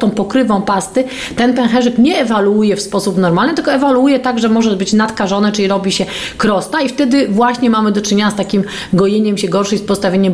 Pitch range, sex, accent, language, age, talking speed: 185-220 Hz, female, native, Polish, 30-49, 195 wpm